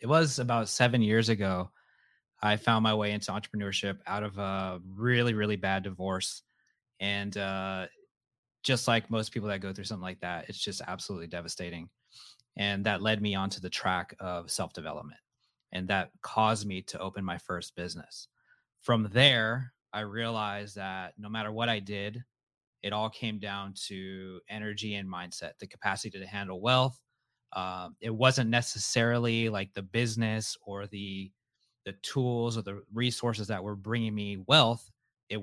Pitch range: 100-115 Hz